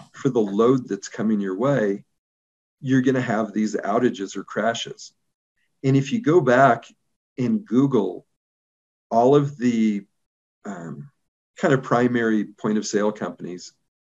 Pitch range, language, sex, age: 100-130 Hz, English, male, 40-59